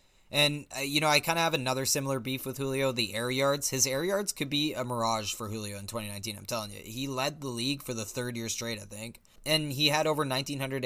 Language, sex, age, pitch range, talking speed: English, male, 20-39, 115-145 Hz, 255 wpm